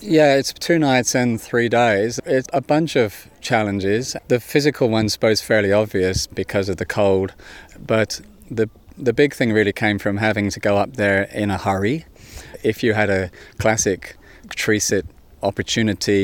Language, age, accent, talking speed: English, 30-49, British, 165 wpm